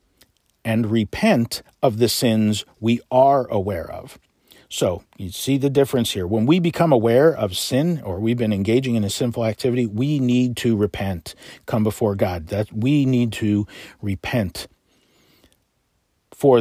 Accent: American